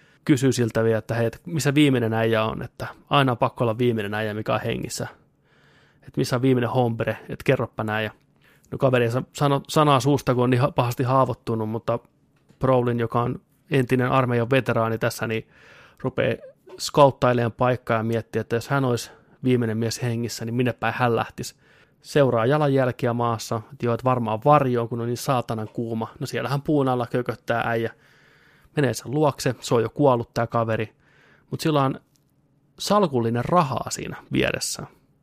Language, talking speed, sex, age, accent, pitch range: Finnish, 170 wpm, male, 20-39, native, 115-140 Hz